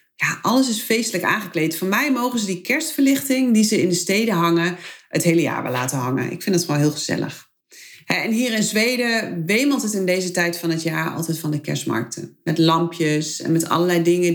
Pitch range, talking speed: 160-215 Hz, 215 wpm